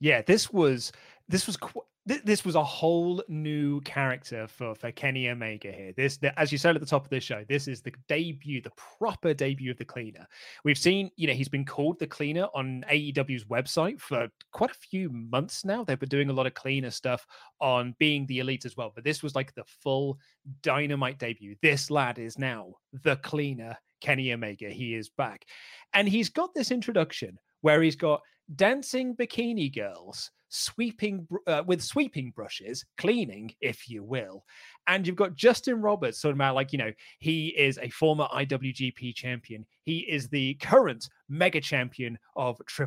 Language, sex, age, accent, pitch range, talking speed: English, male, 30-49, British, 130-170 Hz, 190 wpm